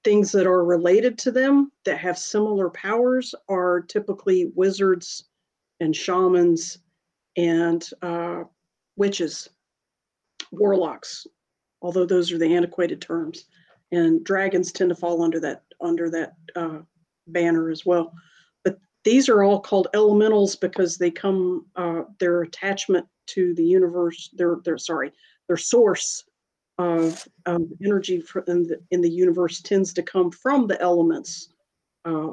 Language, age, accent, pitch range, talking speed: English, 50-69, American, 170-210 Hz, 135 wpm